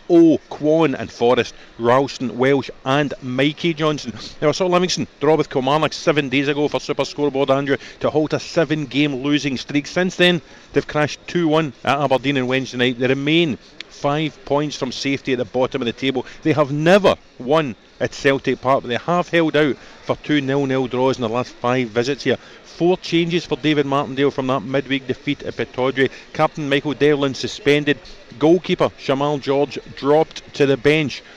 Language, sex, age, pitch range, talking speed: English, male, 50-69, 125-150 Hz, 180 wpm